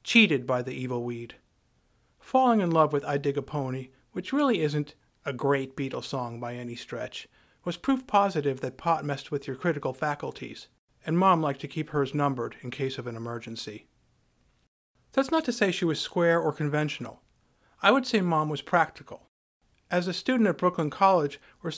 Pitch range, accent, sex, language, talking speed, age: 135-175 Hz, American, male, English, 185 wpm, 50-69